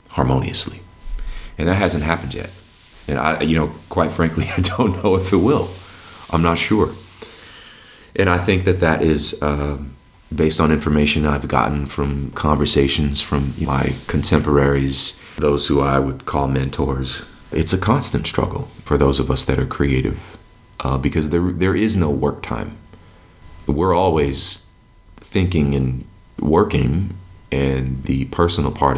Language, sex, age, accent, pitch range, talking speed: English, male, 30-49, American, 65-90 Hz, 155 wpm